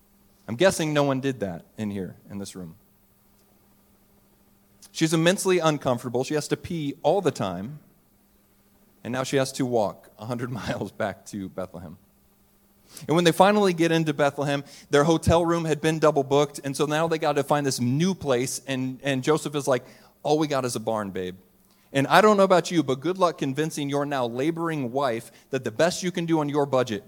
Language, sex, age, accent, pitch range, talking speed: English, male, 30-49, American, 125-155 Hz, 200 wpm